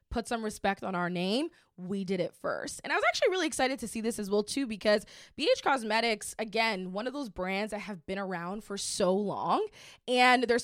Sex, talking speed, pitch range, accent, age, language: female, 220 wpm, 190-235 Hz, American, 20-39, English